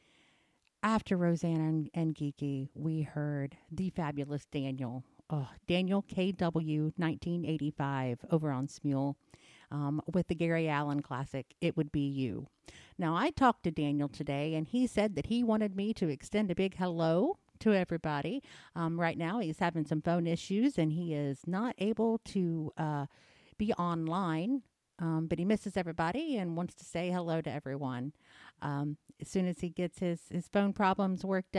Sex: female